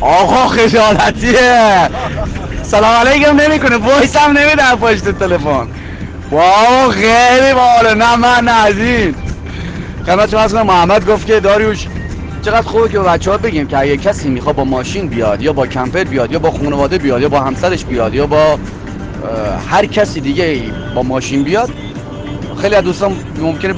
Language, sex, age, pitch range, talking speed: Persian, male, 30-49, 135-200 Hz, 150 wpm